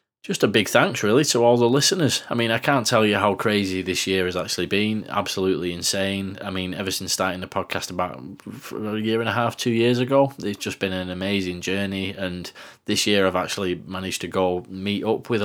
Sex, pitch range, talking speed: male, 95-105 Hz, 220 wpm